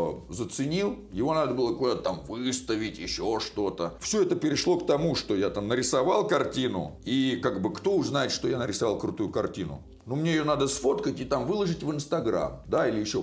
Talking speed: 195 wpm